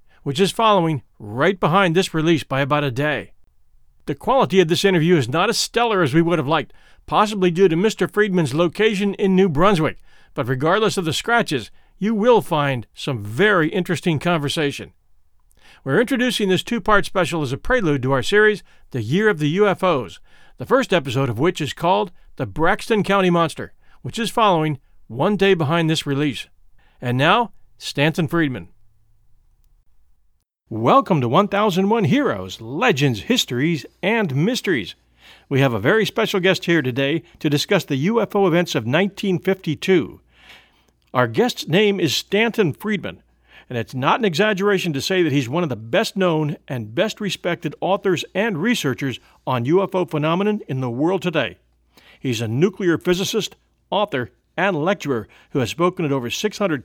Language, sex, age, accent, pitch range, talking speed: English, male, 40-59, American, 140-200 Hz, 160 wpm